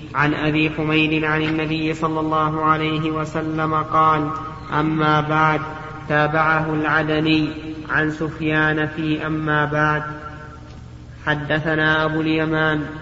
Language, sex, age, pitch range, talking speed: Arabic, male, 30-49, 155-160 Hz, 100 wpm